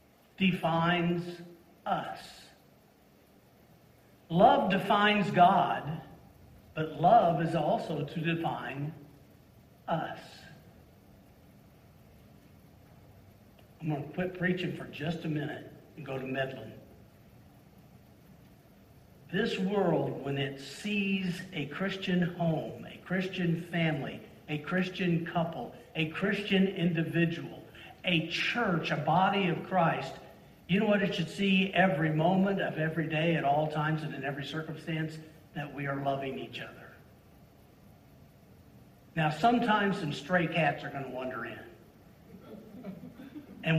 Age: 50-69